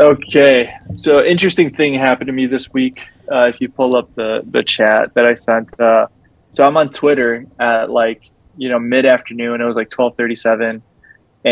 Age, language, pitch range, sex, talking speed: 20-39, English, 115-130 Hz, male, 175 wpm